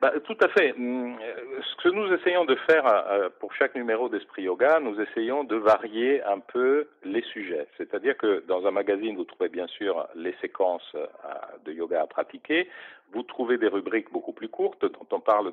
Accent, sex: French, male